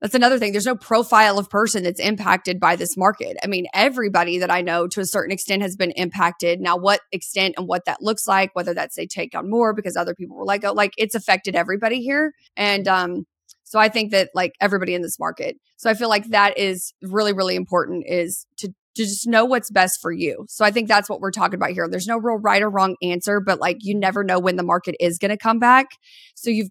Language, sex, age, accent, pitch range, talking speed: English, female, 20-39, American, 185-225 Hz, 245 wpm